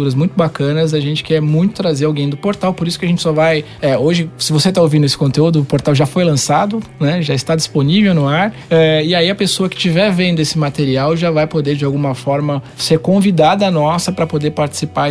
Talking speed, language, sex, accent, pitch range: 235 wpm, Portuguese, male, Brazilian, 140-175 Hz